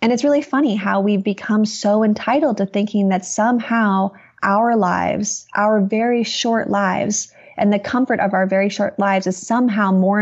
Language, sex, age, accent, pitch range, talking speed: English, female, 20-39, American, 190-220 Hz, 175 wpm